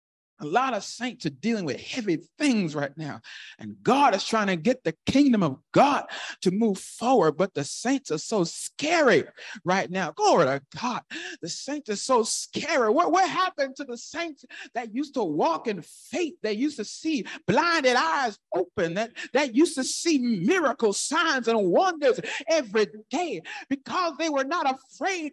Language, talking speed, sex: English, 180 wpm, male